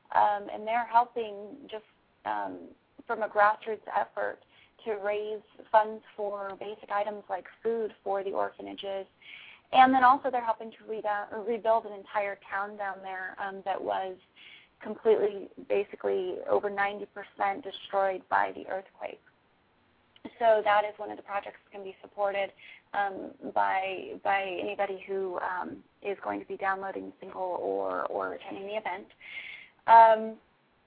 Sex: female